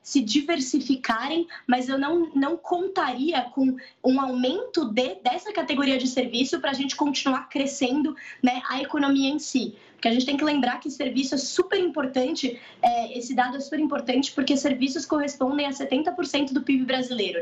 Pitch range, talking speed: 250-285 Hz, 170 wpm